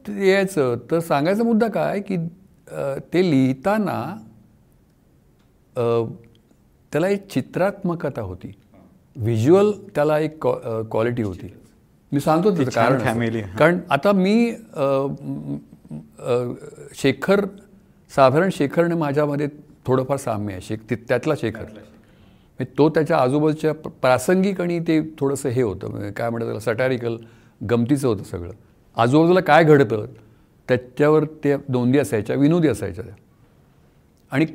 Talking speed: 105 wpm